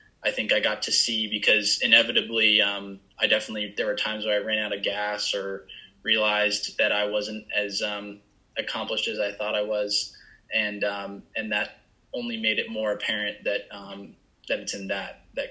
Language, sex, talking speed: English, male, 190 wpm